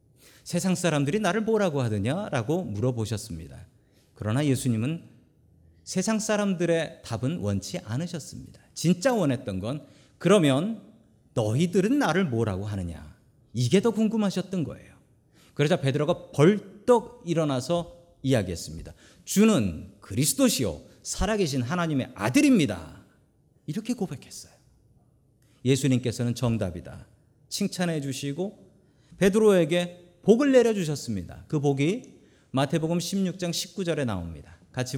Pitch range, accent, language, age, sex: 110-175 Hz, native, Korean, 40-59, male